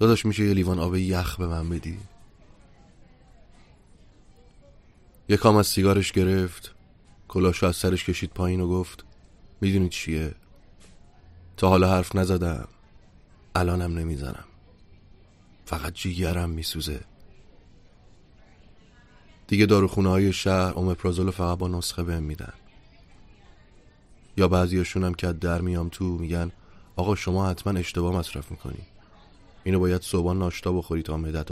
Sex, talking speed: male, 120 wpm